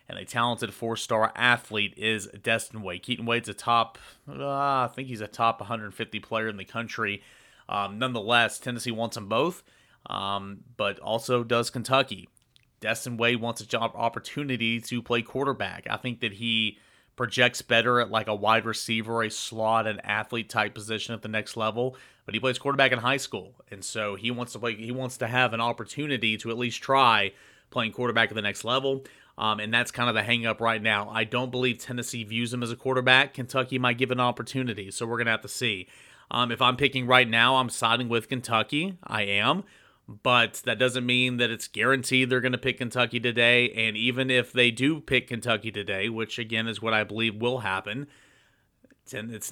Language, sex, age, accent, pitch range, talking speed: English, male, 30-49, American, 110-125 Hz, 200 wpm